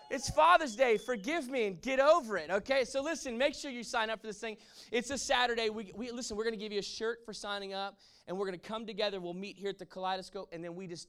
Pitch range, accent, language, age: 165-220 Hz, American, English, 20-39